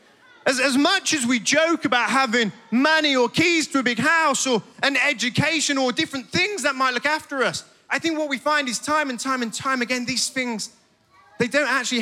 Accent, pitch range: British, 215-275 Hz